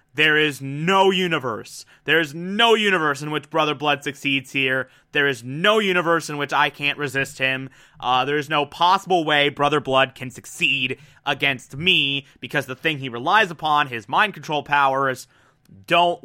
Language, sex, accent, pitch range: English, male, American, 135-165 Hz